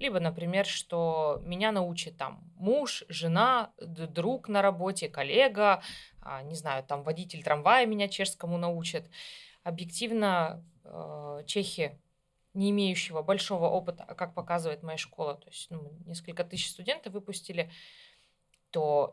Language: Russian